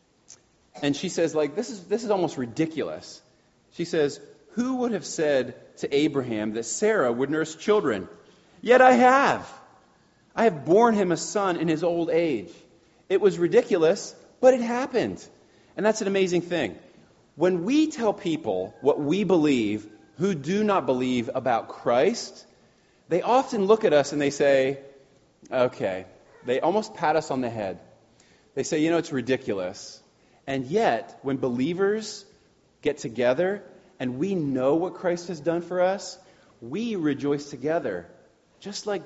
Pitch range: 130-190 Hz